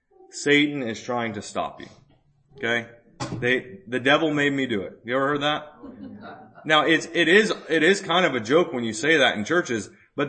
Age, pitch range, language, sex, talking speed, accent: 30-49, 120-165 Hz, English, male, 205 wpm, American